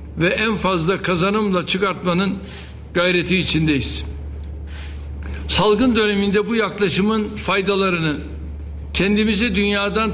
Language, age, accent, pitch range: Turkish, 60-79, native, 175-205 Hz